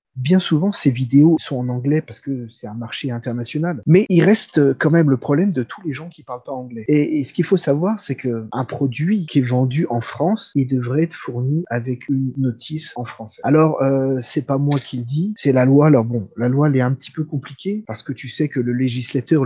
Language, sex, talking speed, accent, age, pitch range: French, male, 245 wpm, French, 30-49, 130-160 Hz